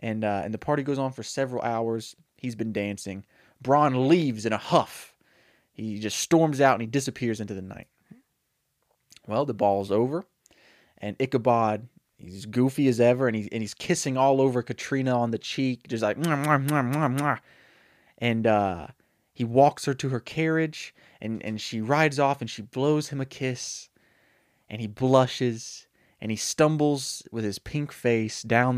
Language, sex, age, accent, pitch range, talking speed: English, male, 20-39, American, 110-140 Hz, 180 wpm